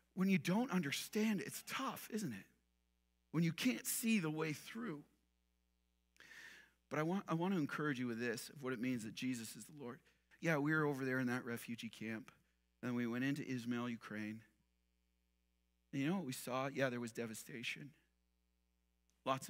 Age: 40-59